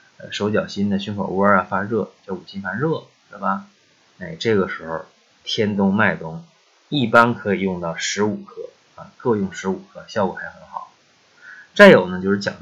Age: 20-39